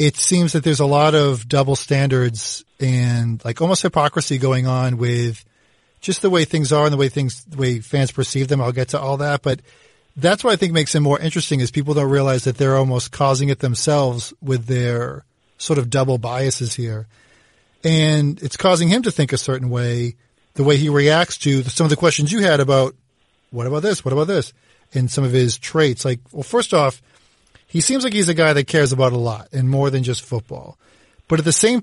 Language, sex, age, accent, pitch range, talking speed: English, male, 40-59, American, 130-160 Hz, 220 wpm